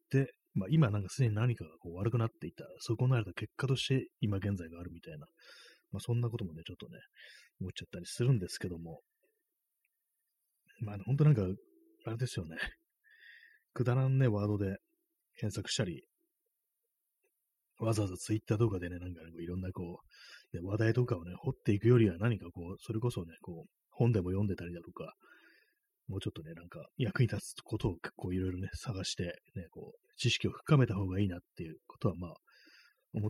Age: 30-49